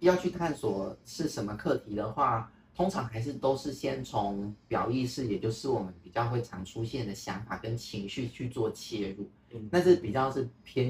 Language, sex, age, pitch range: Chinese, male, 30-49, 110-135 Hz